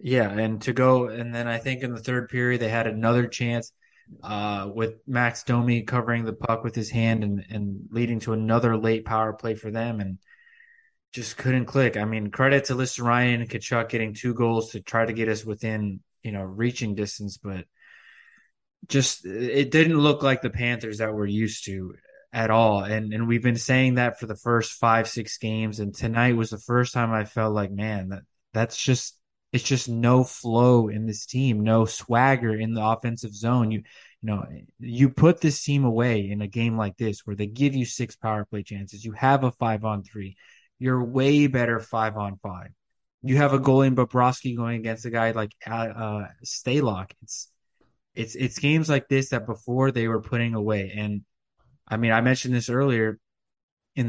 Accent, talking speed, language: American, 200 wpm, English